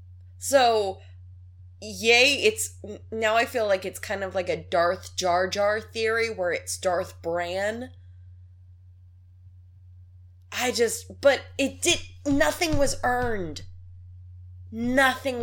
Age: 20-39